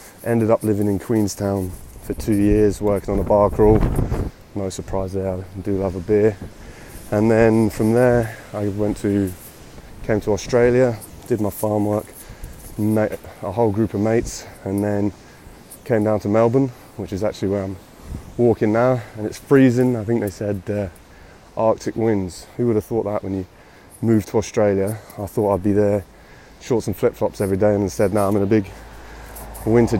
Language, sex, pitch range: English, male, 95-110 Hz